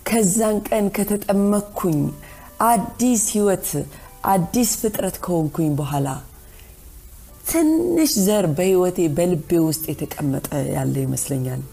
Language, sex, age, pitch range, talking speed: Amharic, female, 30-49, 140-205 Hz, 80 wpm